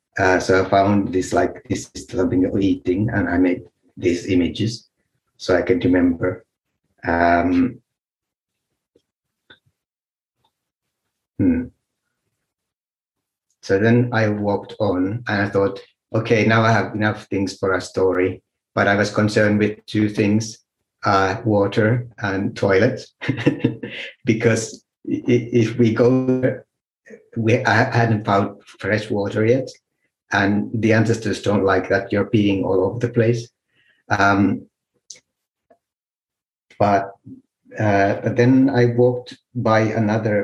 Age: 60-79